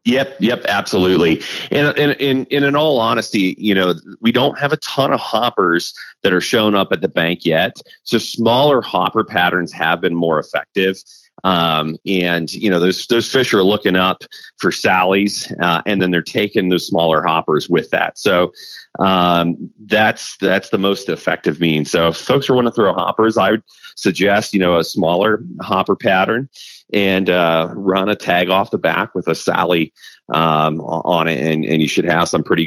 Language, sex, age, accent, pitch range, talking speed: English, male, 30-49, American, 85-105 Hz, 185 wpm